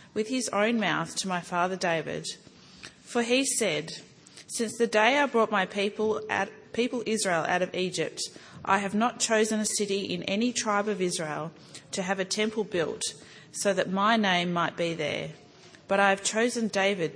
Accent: Australian